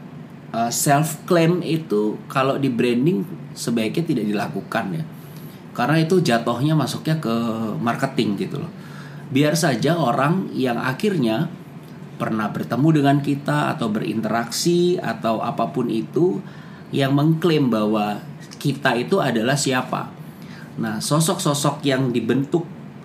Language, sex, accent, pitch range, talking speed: Indonesian, male, native, 115-155 Hz, 110 wpm